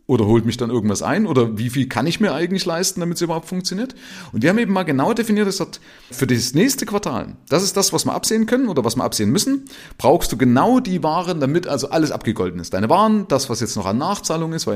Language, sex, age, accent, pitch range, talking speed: German, male, 30-49, German, 110-180 Hz, 255 wpm